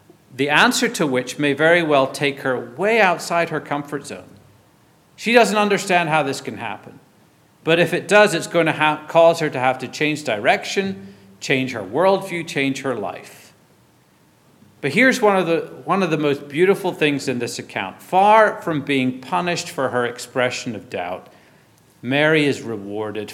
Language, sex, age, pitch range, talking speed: English, male, 50-69, 130-170 Hz, 170 wpm